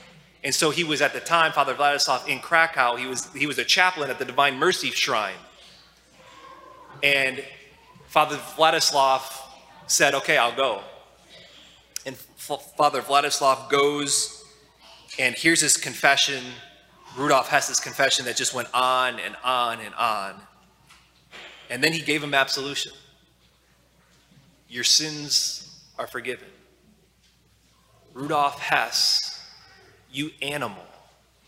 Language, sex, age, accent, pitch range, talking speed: English, male, 20-39, American, 130-155 Hz, 120 wpm